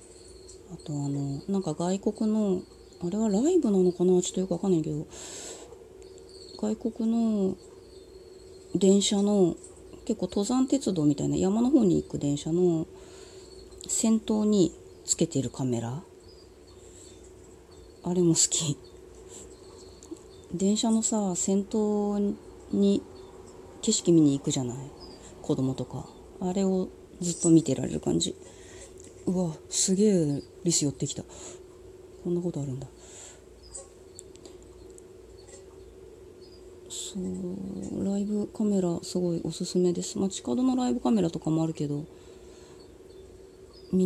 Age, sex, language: 30-49, female, Japanese